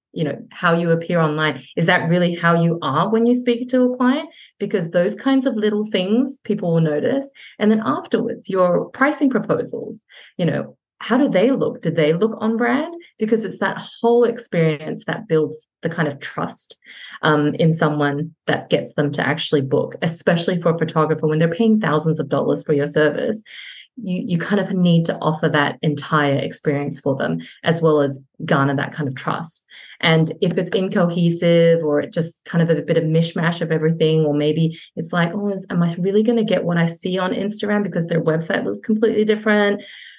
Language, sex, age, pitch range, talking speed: English, female, 30-49, 155-210 Hz, 205 wpm